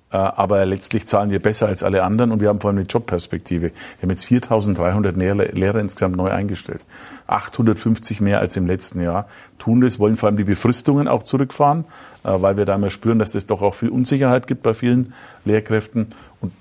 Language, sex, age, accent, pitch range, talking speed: German, male, 50-69, German, 95-115 Hz, 200 wpm